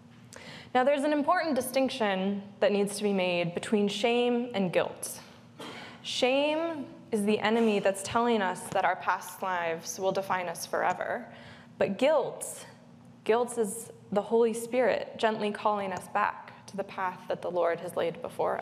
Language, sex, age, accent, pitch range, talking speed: English, female, 20-39, American, 190-230 Hz, 160 wpm